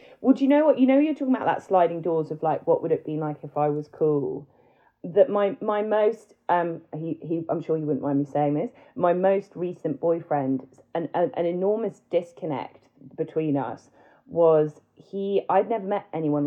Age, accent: 30-49, British